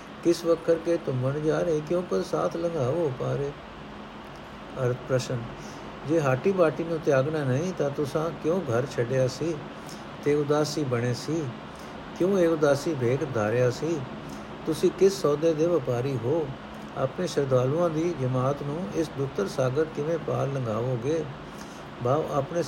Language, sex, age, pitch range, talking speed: Punjabi, male, 60-79, 130-165 Hz, 150 wpm